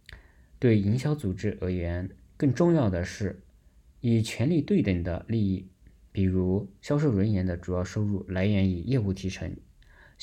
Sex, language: male, Chinese